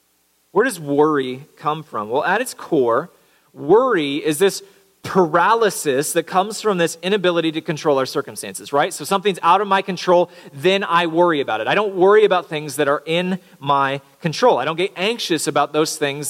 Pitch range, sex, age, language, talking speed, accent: 140-195 Hz, male, 40-59, English, 190 wpm, American